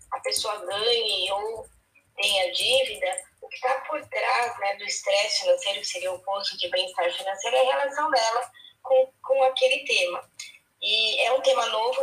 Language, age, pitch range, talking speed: Portuguese, 10-29, 195-290 Hz, 175 wpm